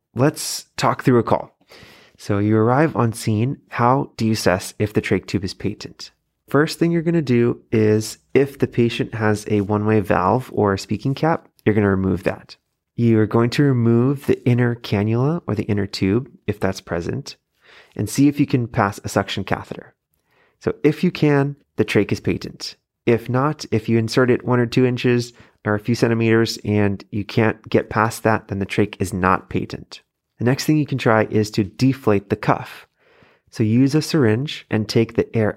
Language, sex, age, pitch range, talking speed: English, male, 30-49, 105-130 Hz, 200 wpm